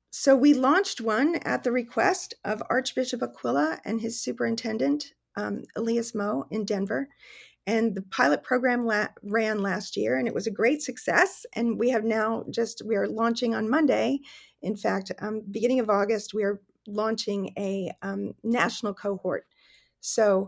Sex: female